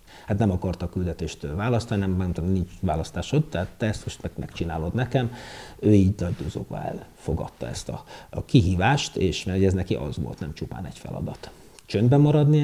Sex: male